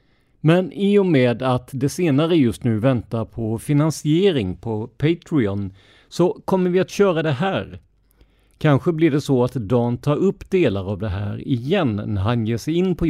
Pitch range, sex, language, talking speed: 110-150 Hz, male, Swedish, 185 wpm